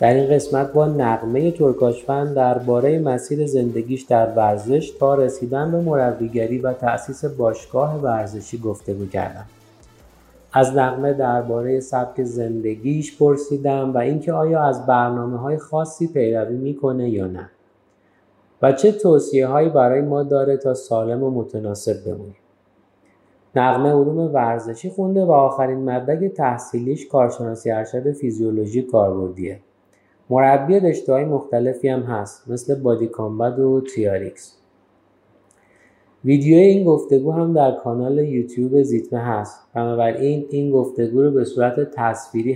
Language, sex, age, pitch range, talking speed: Persian, male, 30-49, 115-140 Hz, 125 wpm